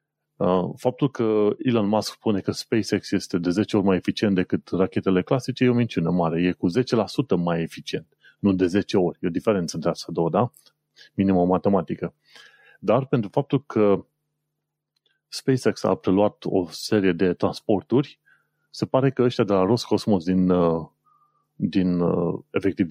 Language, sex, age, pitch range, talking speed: Romanian, male, 30-49, 95-135 Hz, 155 wpm